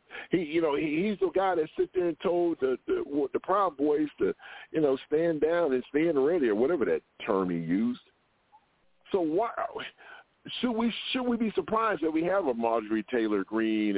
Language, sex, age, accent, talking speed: English, male, 50-69, American, 195 wpm